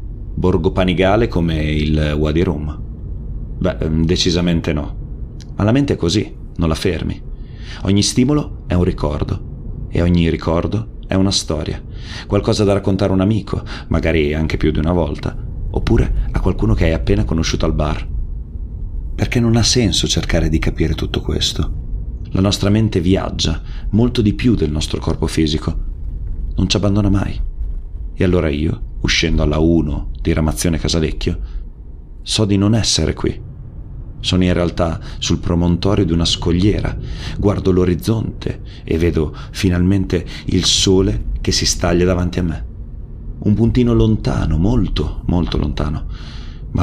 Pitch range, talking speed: 80-100 Hz, 145 wpm